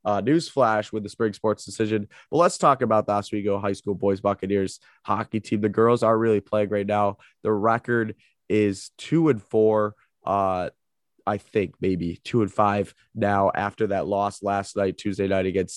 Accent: American